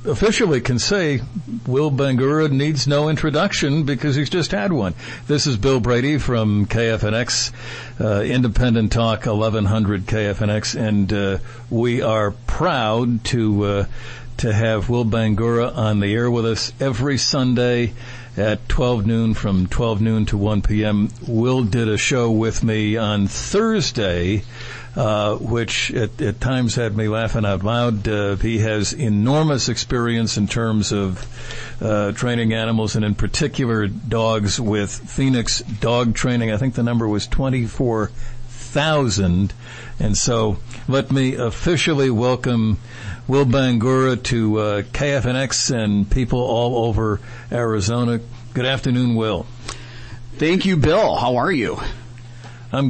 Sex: male